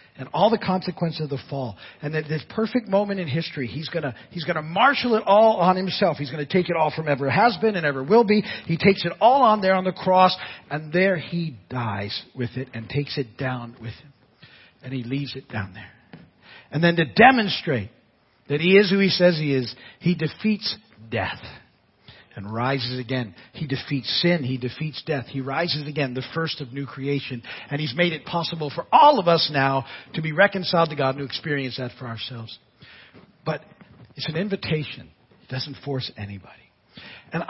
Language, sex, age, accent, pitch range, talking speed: English, male, 50-69, American, 130-180 Hz, 205 wpm